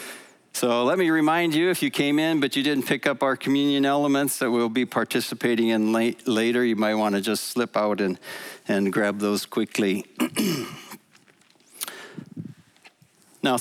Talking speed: 160 wpm